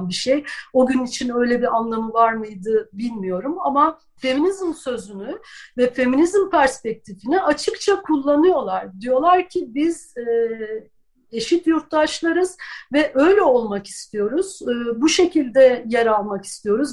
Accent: native